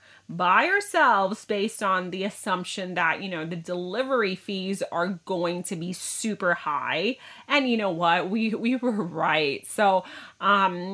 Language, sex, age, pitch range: Thai, female, 30-49, 180-240 Hz